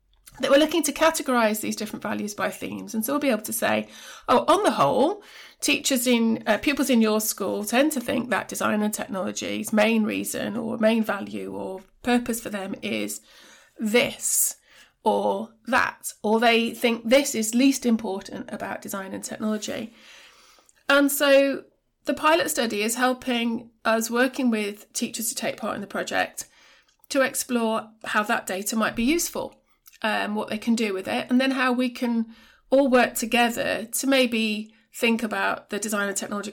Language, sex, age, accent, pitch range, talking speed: English, female, 30-49, British, 215-255 Hz, 175 wpm